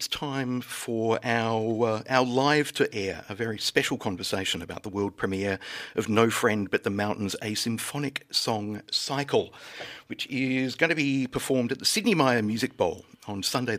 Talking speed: 180 wpm